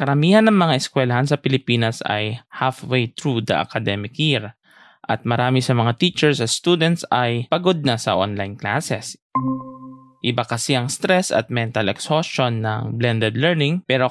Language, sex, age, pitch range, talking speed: English, male, 20-39, 115-140 Hz, 155 wpm